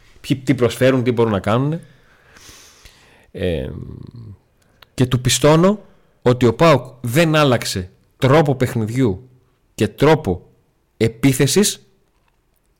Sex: male